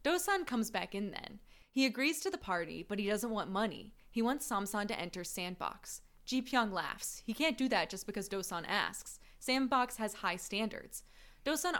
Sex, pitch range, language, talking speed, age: female, 190-245 Hz, English, 190 wpm, 20-39